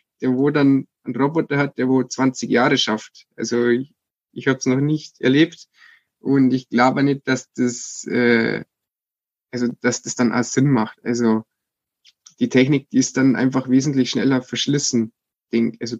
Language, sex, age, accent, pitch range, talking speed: German, male, 20-39, German, 125-150 Hz, 165 wpm